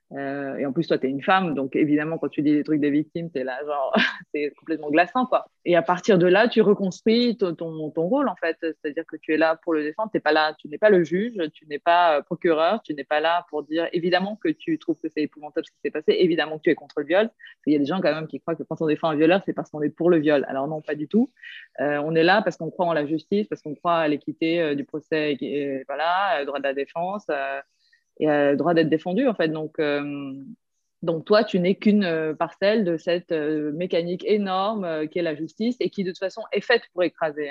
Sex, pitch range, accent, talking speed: female, 155-200 Hz, French, 270 wpm